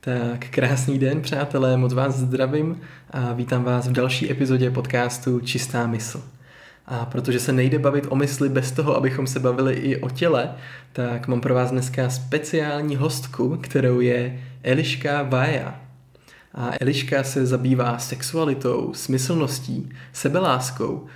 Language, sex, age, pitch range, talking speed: Czech, male, 20-39, 125-140 Hz, 140 wpm